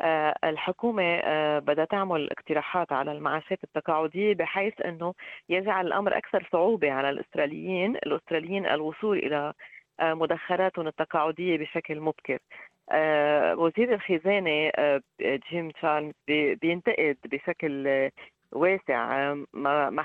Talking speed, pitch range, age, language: 85 wpm, 150-180 Hz, 30-49, Arabic